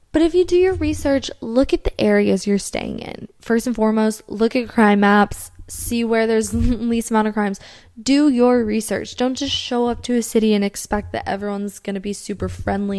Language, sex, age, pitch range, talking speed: English, female, 10-29, 190-235 Hz, 210 wpm